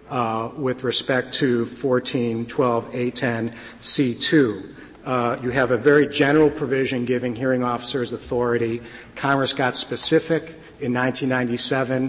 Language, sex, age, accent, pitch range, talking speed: English, male, 50-69, American, 125-145 Hz, 100 wpm